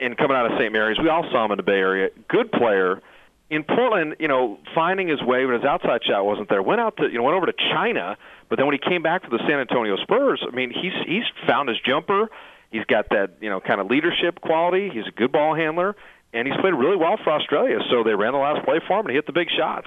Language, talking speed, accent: English, 275 wpm, American